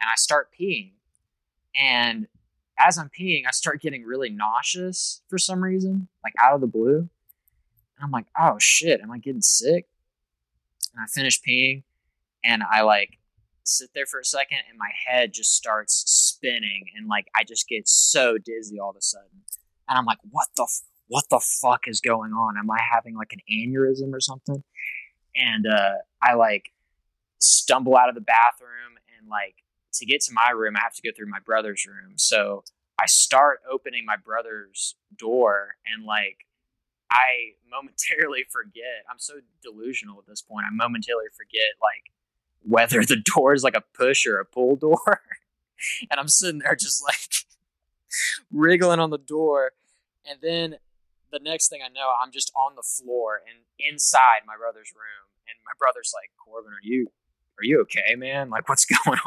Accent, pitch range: American, 110-150 Hz